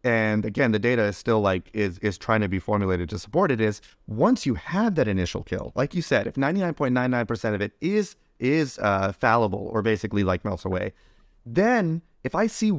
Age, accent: 30-49, American